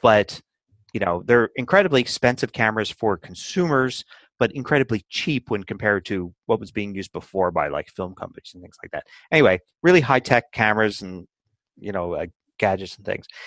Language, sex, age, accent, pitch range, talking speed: English, male, 30-49, American, 100-125 Hz, 175 wpm